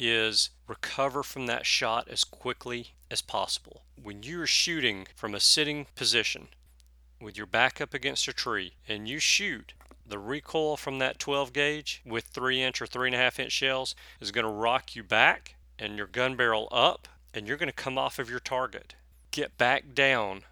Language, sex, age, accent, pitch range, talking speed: English, male, 40-59, American, 105-135 Hz, 180 wpm